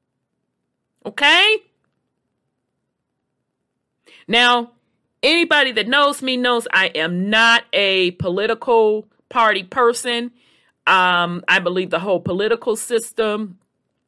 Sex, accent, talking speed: female, American, 90 wpm